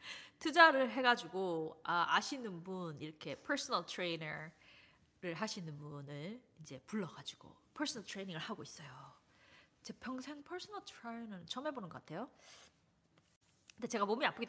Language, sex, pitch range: Korean, female, 180-270 Hz